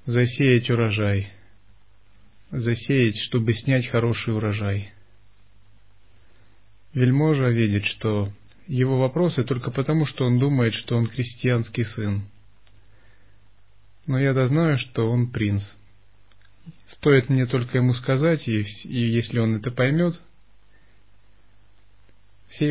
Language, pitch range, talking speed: Russian, 100-125 Hz, 105 wpm